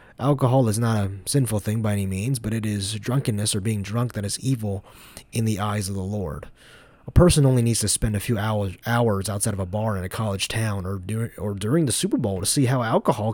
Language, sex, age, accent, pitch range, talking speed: English, male, 20-39, American, 105-130 Hz, 230 wpm